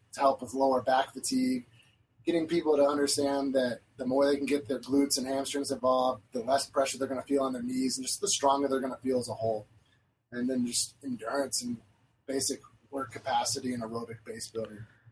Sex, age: male, 30-49